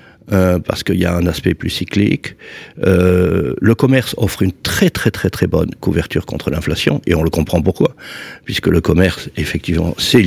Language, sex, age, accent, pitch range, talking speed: French, male, 60-79, French, 90-115 Hz, 185 wpm